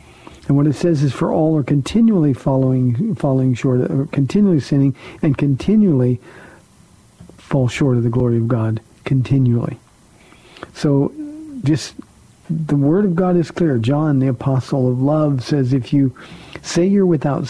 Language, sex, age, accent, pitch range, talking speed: English, male, 50-69, American, 135-160 Hz, 150 wpm